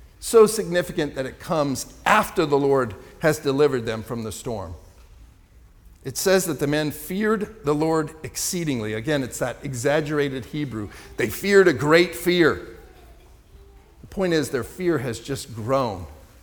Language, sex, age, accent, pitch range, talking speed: English, male, 50-69, American, 105-160 Hz, 150 wpm